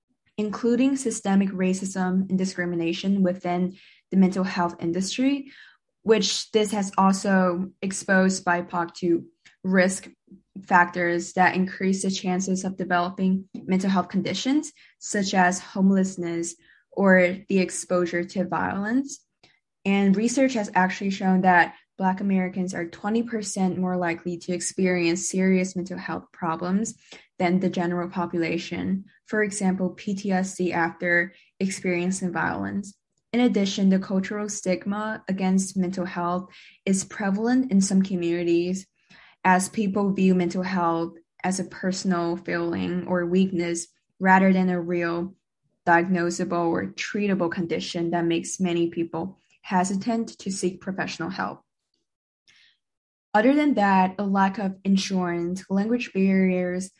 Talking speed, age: 120 wpm, 10-29